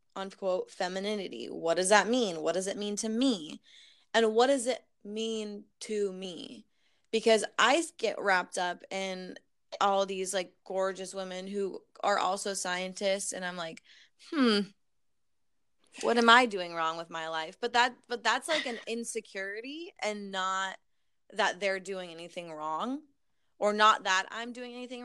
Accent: American